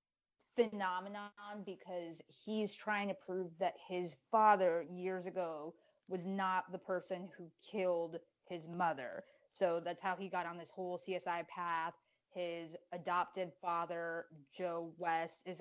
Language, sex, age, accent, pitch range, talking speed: English, female, 20-39, American, 175-205 Hz, 135 wpm